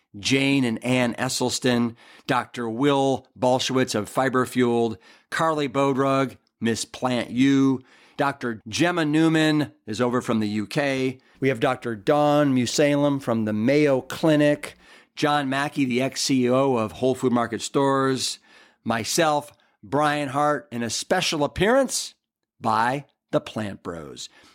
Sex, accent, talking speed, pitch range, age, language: male, American, 125 wpm, 125-155 Hz, 50-69, English